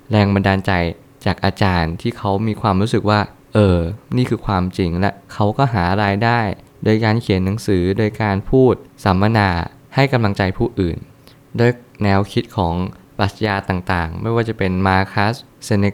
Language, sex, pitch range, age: Thai, male, 95-115 Hz, 20-39